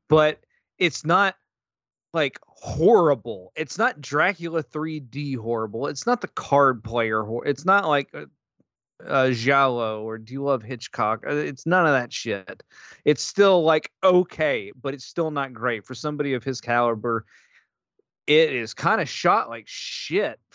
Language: English